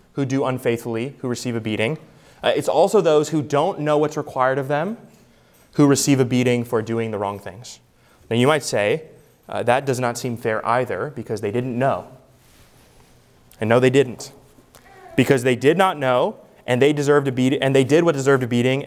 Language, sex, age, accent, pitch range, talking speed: English, male, 20-39, American, 120-150 Hz, 200 wpm